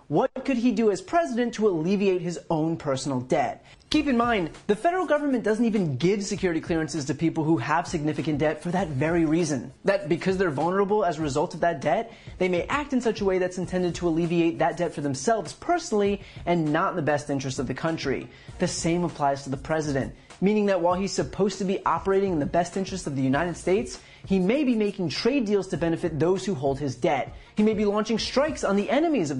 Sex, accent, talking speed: male, American, 230 wpm